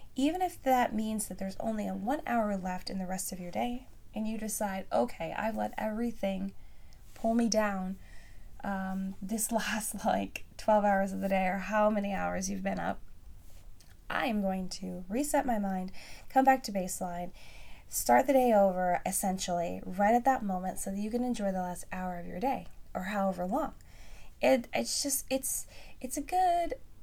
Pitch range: 185-245 Hz